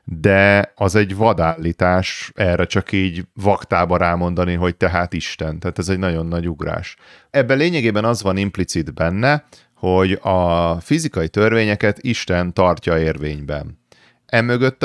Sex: male